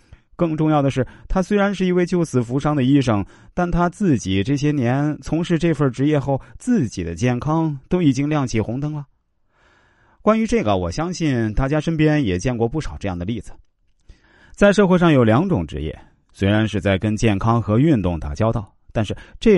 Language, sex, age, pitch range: Chinese, male, 30-49, 95-150 Hz